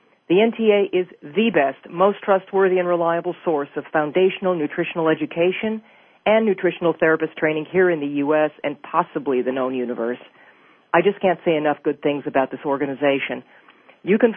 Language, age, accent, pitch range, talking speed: English, 40-59, American, 145-190 Hz, 165 wpm